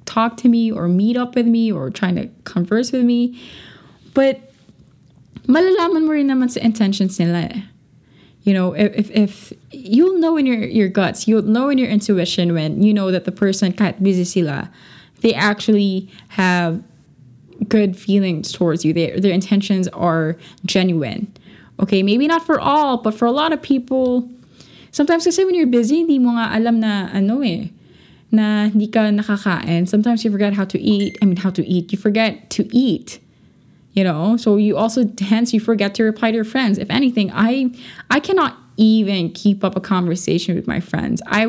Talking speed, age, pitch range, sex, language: 180 wpm, 20-39, 185-230 Hz, female, English